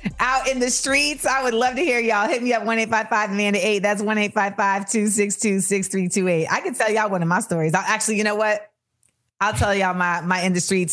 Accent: American